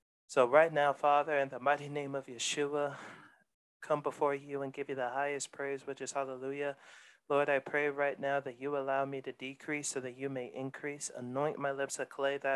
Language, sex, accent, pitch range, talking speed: English, male, American, 135-145 Hz, 210 wpm